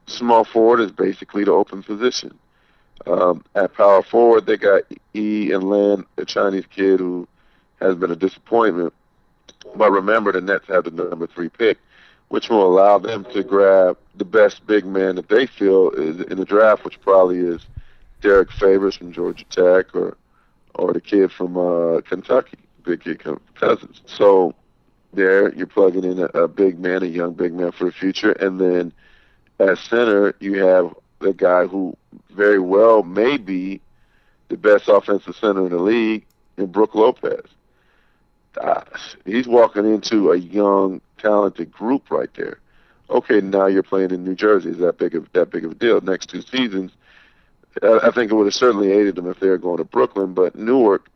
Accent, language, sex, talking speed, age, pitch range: American, English, male, 180 wpm, 50-69, 95-110 Hz